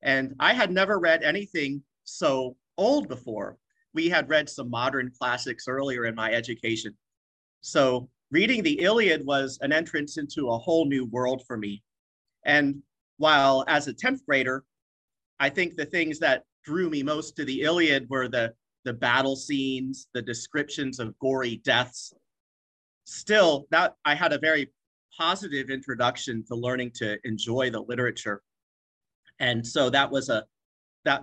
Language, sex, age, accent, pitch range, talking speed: English, male, 40-59, American, 120-150 Hz, 155 wpm